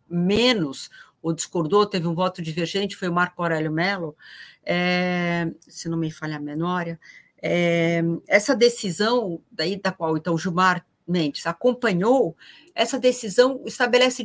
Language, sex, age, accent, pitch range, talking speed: Portuguese, female, 50-69, Brazilian, 175-250 Hz, 135 wpm